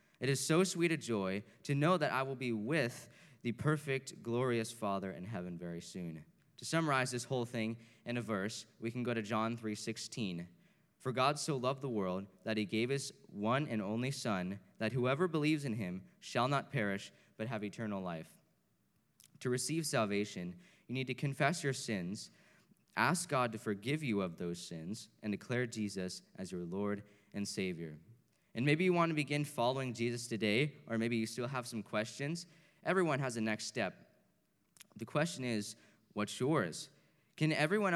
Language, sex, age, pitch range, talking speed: English, male, 20-39, 110-145 Hz, 180 wpm